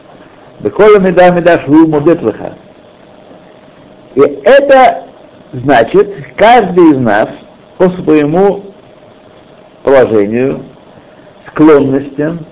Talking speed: 50 wpm